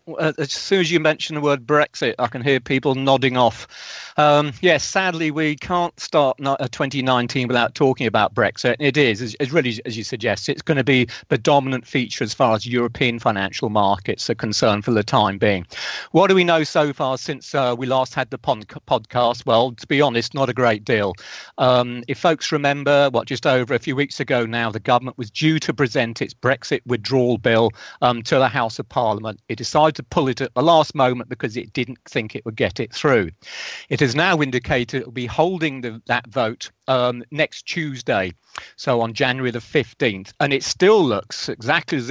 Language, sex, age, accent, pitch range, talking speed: English, male, 40-59, British, 115-145 Hz, 205 wpm